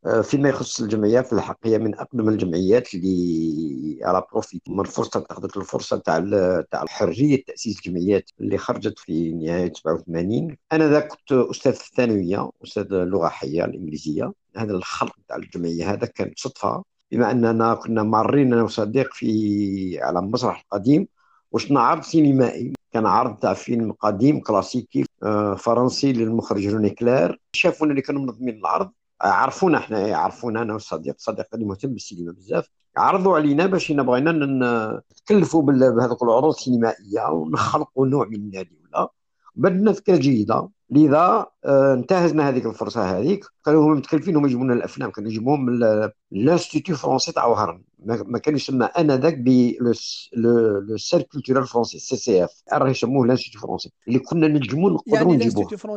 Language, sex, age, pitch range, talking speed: Arabic, male, 60-79, 110-155 Hz, 140 wpm